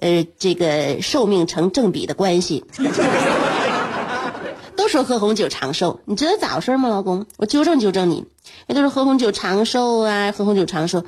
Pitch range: 180-290 Hz